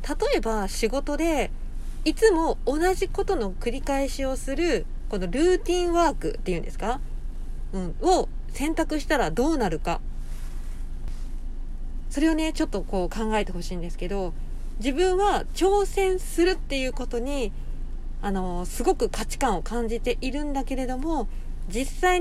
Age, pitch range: 40-59, 195-315 Hz